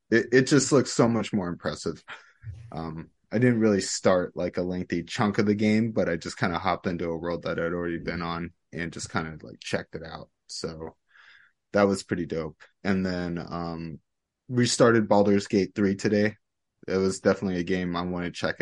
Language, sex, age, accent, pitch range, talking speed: English, male, 20-39, American, 85-105 Hz, 210 wpm